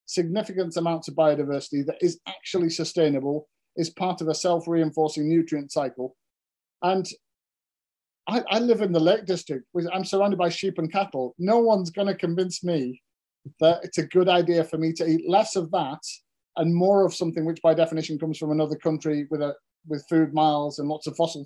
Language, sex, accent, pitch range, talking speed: English, male, British, 155-180 Hz, 180 wpm